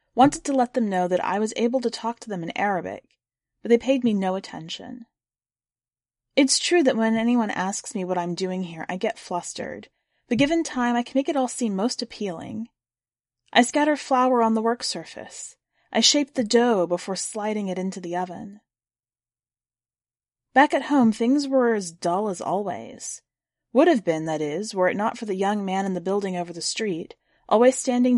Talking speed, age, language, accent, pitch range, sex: 195 wpm, 30-49, English, American, 180-245 Hz, female